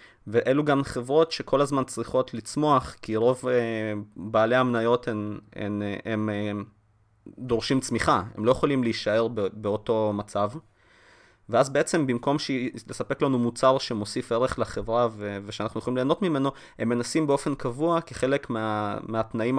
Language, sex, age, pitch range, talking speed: Hebrew, male, 20-39, 110-135 Hz, 125 wpm